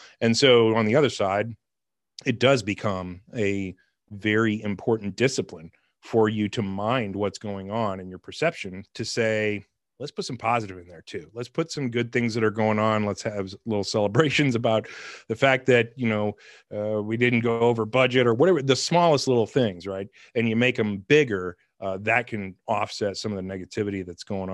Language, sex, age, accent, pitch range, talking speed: English, male, 30-49, American, 100-115 Hz, 195 wpm